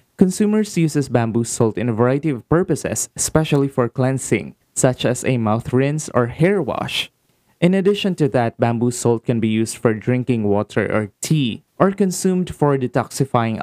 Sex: male